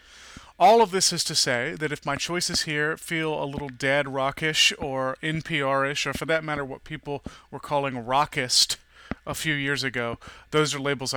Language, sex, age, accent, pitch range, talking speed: English, male, 30-49, American, 130-150 Hz, 185 wpm